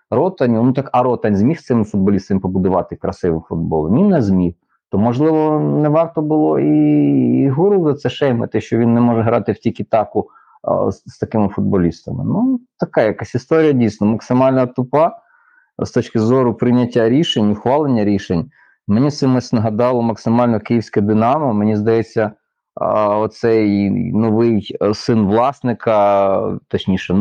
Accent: native